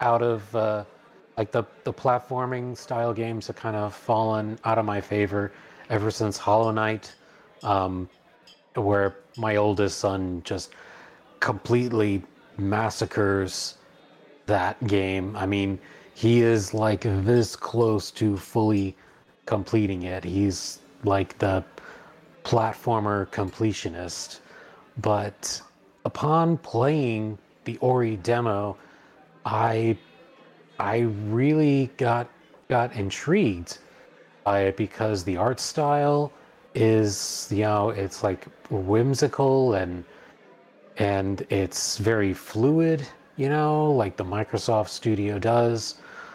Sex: male